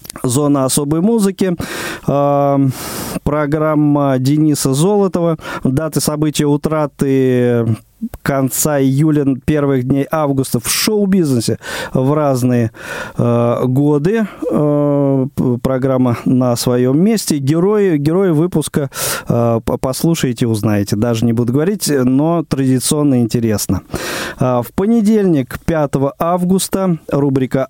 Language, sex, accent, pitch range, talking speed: Russian, male, native, 125-155 Hz, 95 wpm